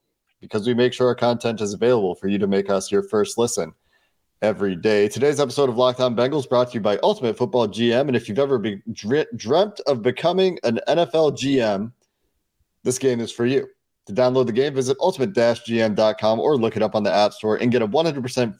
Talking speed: 210 wpm